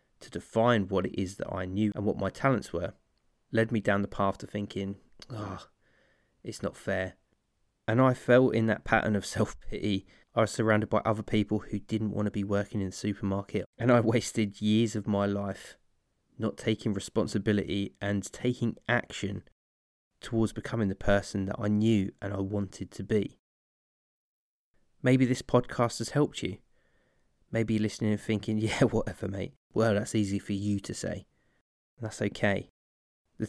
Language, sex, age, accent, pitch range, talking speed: English, male, 20-39, British, 100-115 Hz, 170 wpm